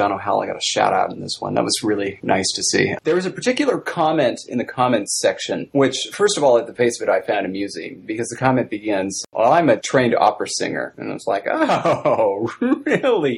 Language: English